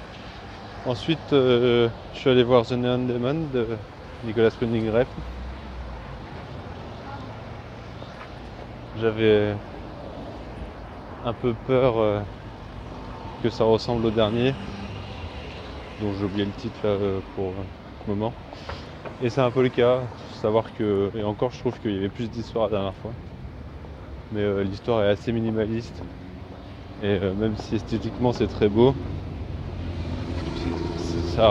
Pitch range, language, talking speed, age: 95-115 Hz, French, 130 wpm, 20-39